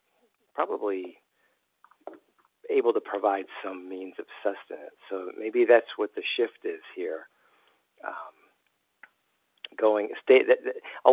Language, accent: English, American